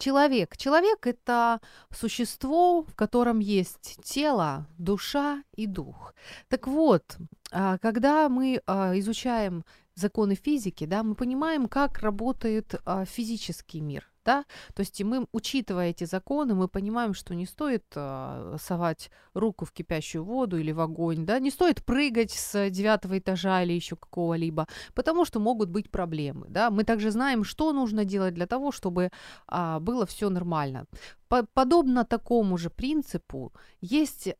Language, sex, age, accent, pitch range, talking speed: Ukrainian, female, 30-49, native, 180-250 Hz, 135 wpm